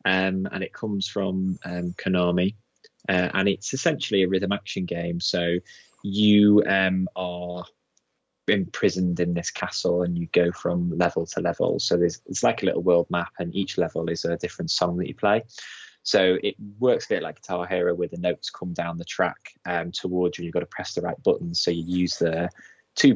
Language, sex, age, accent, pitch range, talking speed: English, male, 20-39, British, 85-95 Hz, 205 wpm